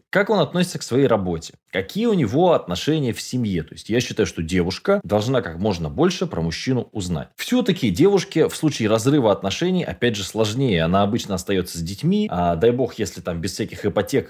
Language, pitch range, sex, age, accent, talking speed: Russian, 95-155 Hz, male, 20-39, native, 195 wpm